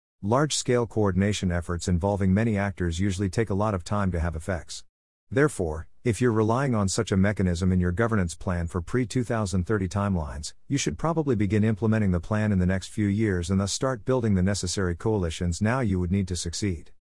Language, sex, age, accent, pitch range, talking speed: English, male, 50-69, American, 90-110 Hz, 190 wpm